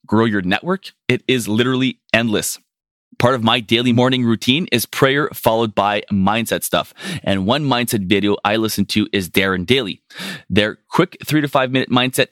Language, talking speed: English, 175 wpm